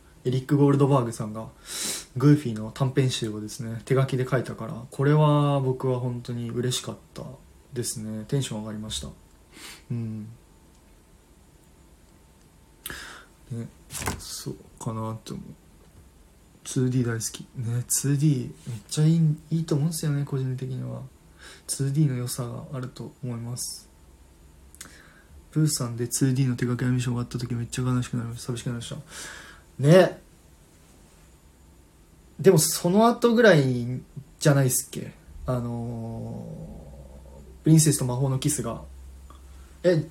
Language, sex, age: Japanese, male, 20-39